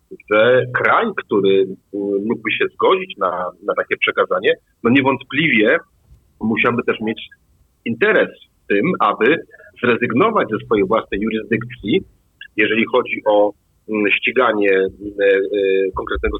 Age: 40-59